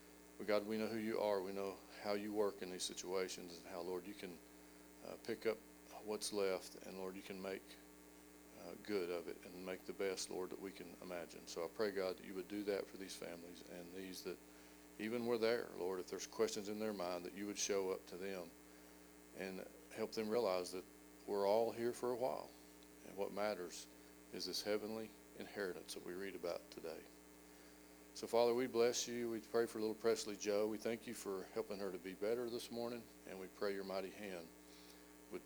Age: 40-59